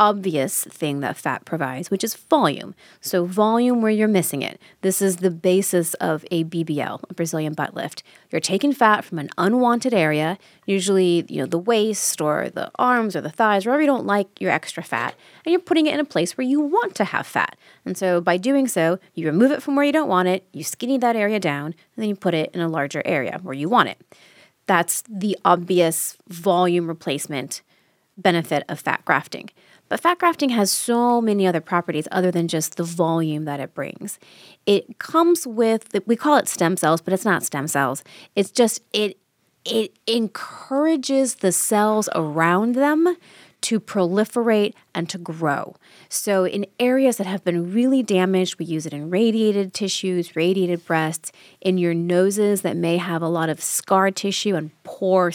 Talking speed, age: 190 wpm, 30-49